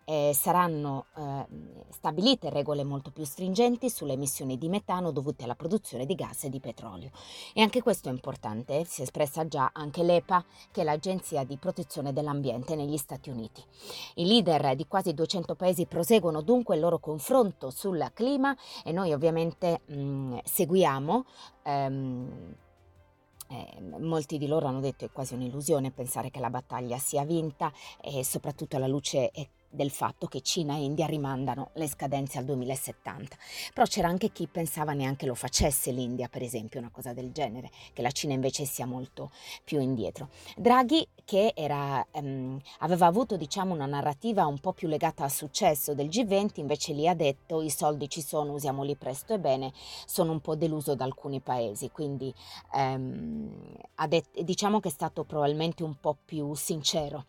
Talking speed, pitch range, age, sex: 165 wpm, 135-170 Hz, 30-49, female